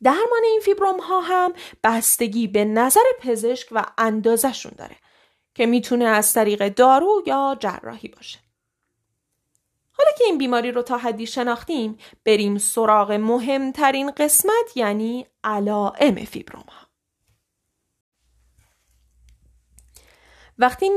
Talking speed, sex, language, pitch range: 105 wpm, female, Persian, 210-320 Hz